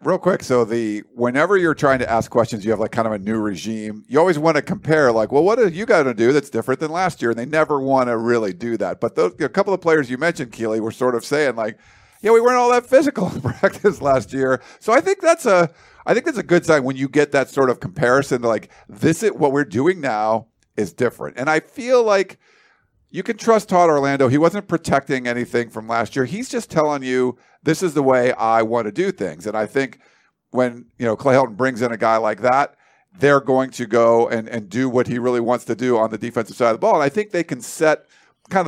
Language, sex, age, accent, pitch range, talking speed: English, male, 50-69, American, 115-155 Hz, 255 wpm